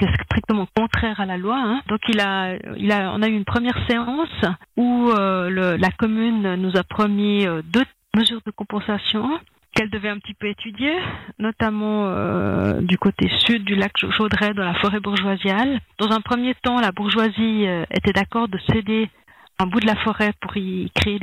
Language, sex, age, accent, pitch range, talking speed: French, female, 40-59, French, 195-230 Hz, 190 wpm